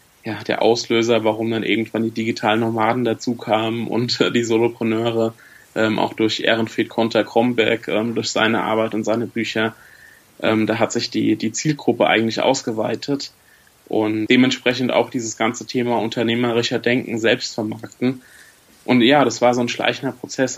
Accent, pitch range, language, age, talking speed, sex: German, 110-120 Hz, German, 20-39, 160 wpm, male